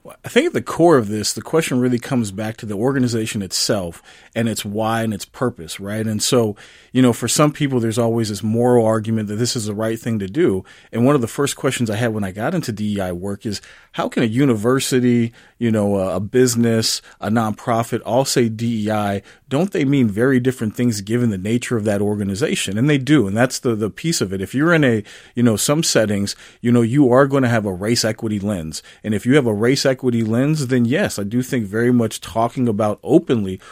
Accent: American